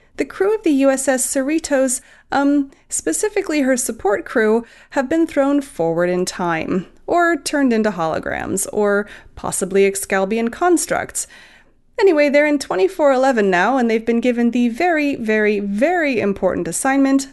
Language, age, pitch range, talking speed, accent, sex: English, 30-49, 195-290 Hz, 140 wpm, American, female